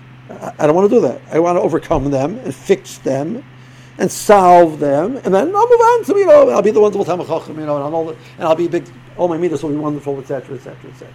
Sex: male